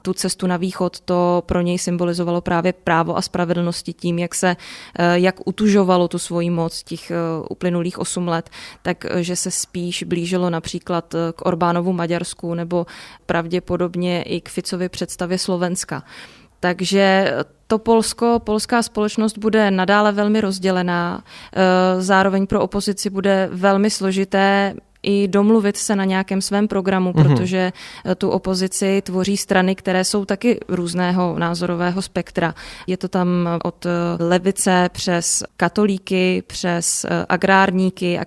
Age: 20-39